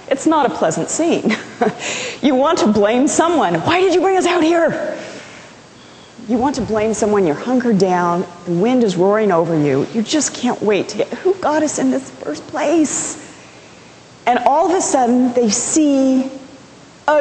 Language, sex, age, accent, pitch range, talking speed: English, female, 40-59, American, 205-320 Hz, 180 wpm